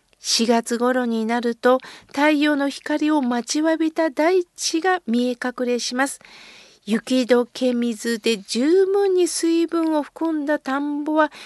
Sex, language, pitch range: female, Japanese, 230-315 Hz